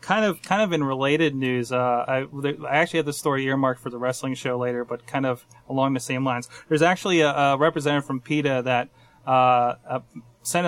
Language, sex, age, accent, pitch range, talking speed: English, male, 30-49, American, 130-160 Hz, 215 wpm